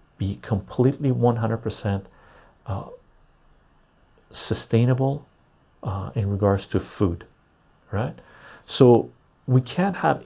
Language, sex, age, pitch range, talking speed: English, male, 50-69, 100-125 Hz, 90 wpm